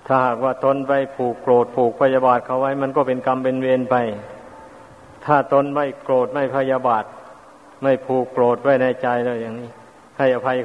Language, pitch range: Thai, 120-135 Hz